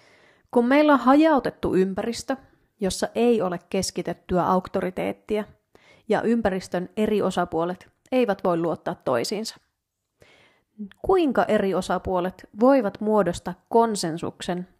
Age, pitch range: 30-49, 180-230 Hz